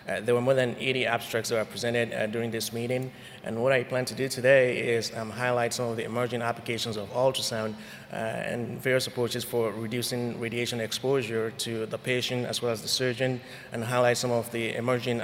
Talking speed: 210 wpm